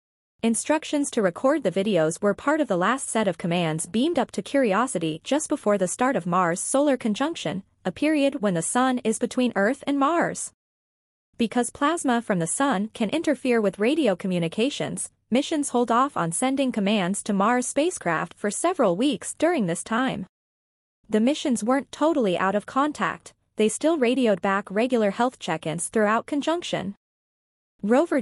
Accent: American